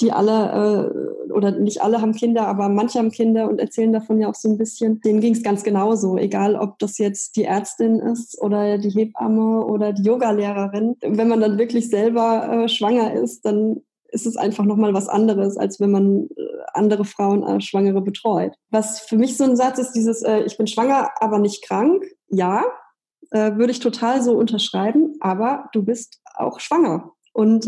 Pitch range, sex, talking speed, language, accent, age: 210-245 Hz, female, 195 wpm, German, German, 20-39